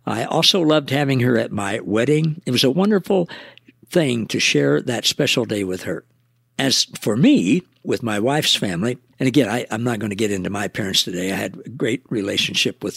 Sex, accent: male, American